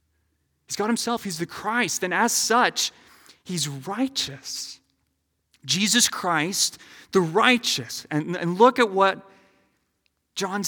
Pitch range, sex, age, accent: 130-180 Hz, male, 30-49, American